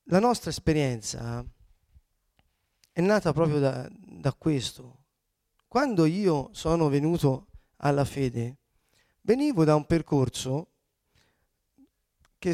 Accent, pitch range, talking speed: native, 130-165 Hz, 95 wpm